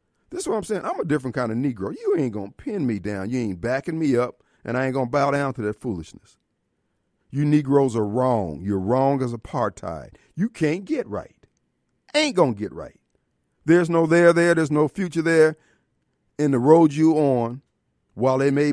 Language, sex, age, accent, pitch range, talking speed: English, male, 50-69, American, 125-170 Hz, 210 wpm